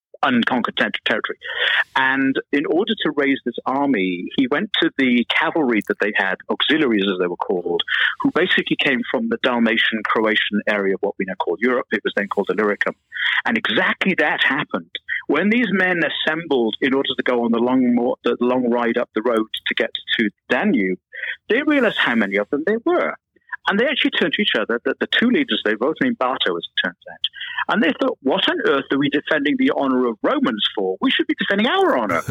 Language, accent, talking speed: English, British, 210 wpm